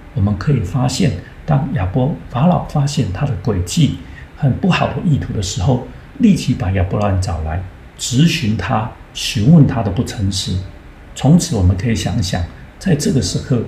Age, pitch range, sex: 50-69, 90-125 Hz, male